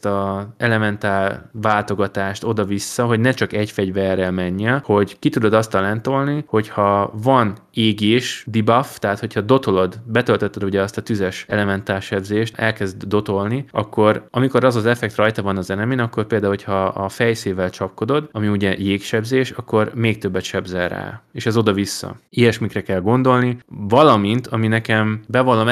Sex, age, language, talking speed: male, 20-39, Hungarian, 155 wpm